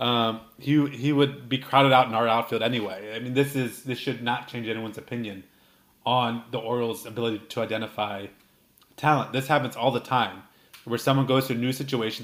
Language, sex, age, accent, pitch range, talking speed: English, male, 30-49, American, 110-140 Hz, 195 wpm